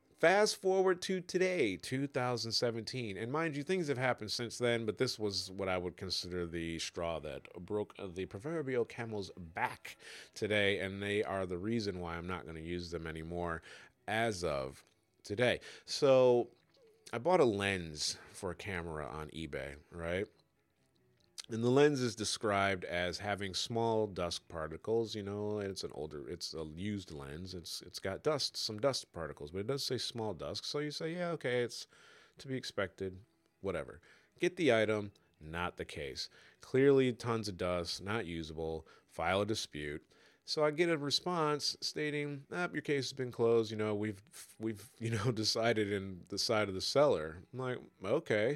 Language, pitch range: English, 90-125 Hz